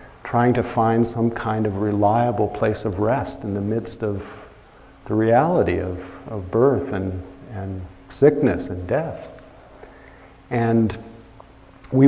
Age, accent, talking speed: 50-69, American, 130 wpm